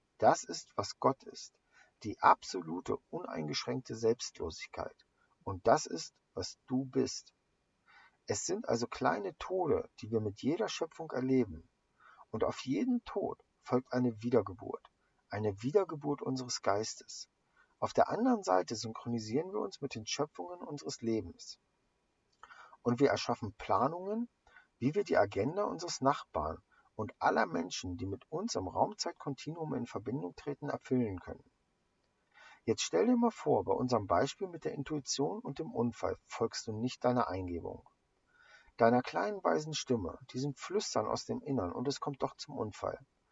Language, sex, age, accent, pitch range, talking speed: English, male, 50-69, German, 115-150 Hz, 145 wpm